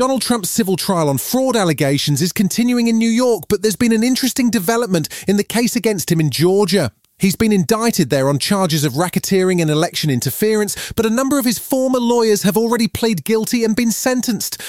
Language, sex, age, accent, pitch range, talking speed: English, male, 30-49, British, 150-220 Hz, 205 wpm